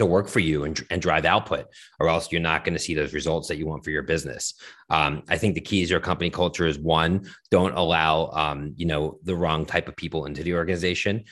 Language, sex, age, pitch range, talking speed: English, male, 30-49, 80-90 Hz, 250 wpm